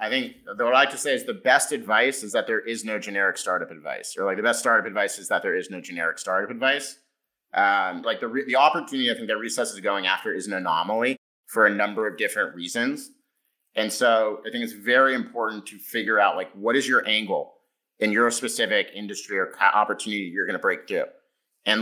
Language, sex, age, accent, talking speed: English, male, 30-49, American, 225 wpm